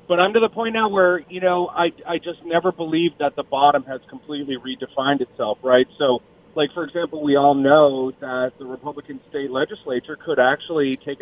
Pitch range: 130-150 Hz